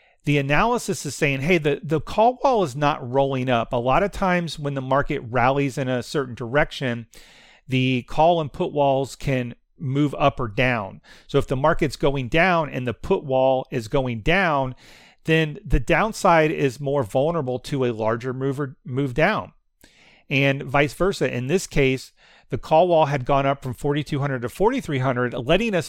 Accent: American